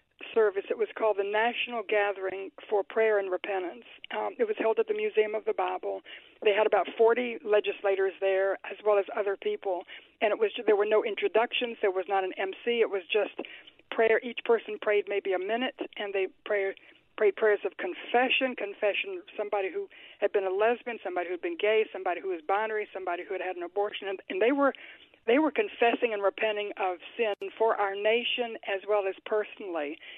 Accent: American